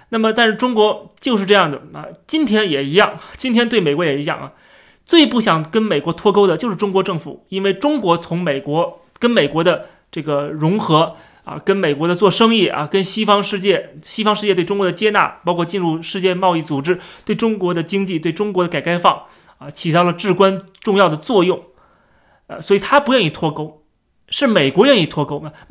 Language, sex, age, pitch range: Chinese, male, 30-49, 165-225 Hz